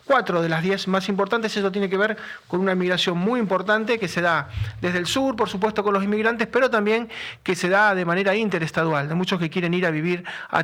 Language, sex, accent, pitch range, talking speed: Spanish, male, Argentinian, 170-205 Hz, 235 wpm